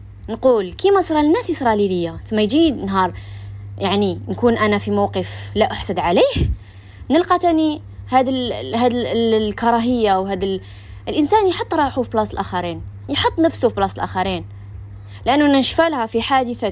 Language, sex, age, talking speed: Arabic, female, 20-39, 145 wpm